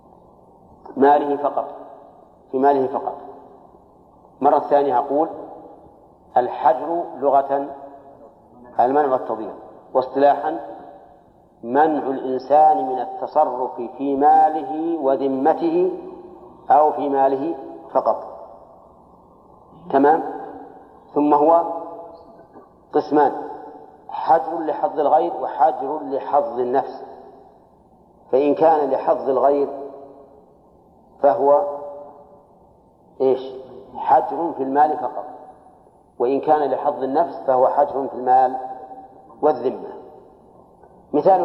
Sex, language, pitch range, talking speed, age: male, Arabic, 135-165 Hz, 80 wpm, 50-69